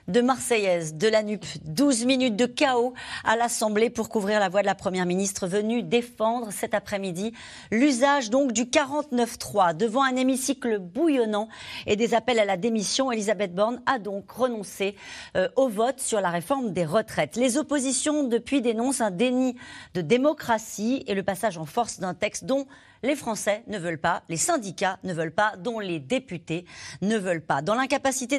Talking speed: 175 wpm